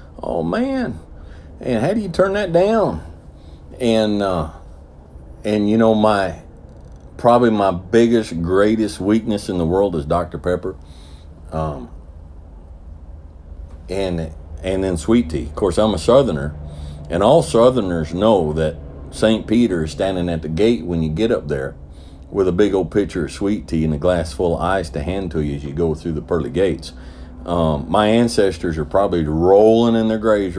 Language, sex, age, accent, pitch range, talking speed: English, male, 50-69, American, 80-105 Hz, 175 wpm